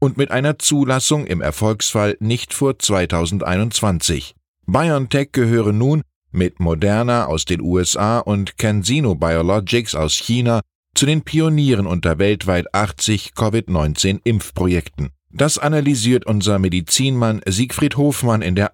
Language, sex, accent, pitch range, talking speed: German, male, German, 90-130 Hz, 120 wpm